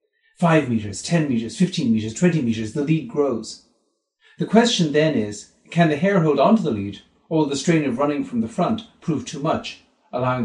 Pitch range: 125-175 Hz